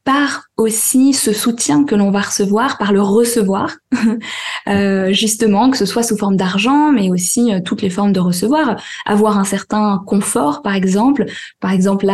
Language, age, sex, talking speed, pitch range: French, 20-39, female, 180 wpm, 195-230 Hz